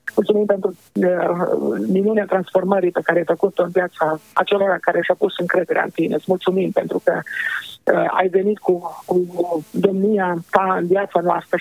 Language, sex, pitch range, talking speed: Romanian, male, 170-200 Hz, 170 wpm